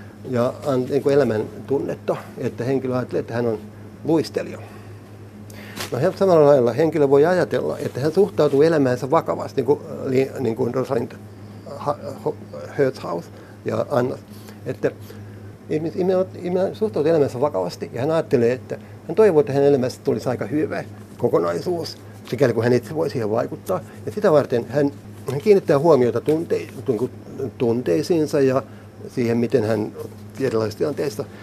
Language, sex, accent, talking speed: Finnish, male, native, 130 wpm